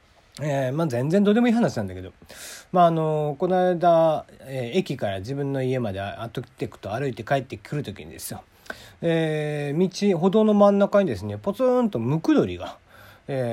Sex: male